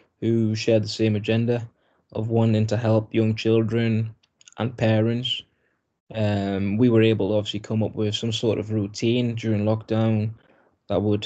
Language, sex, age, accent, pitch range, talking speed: English, male, 20-39, British, 105-115 Hz, 160 wpm